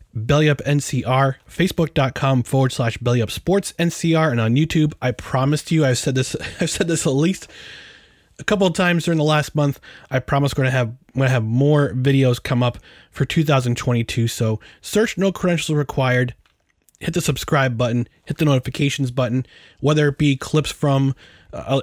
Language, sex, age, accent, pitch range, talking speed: English, male, 20-39, American, 120-160 Hz, 170 wpm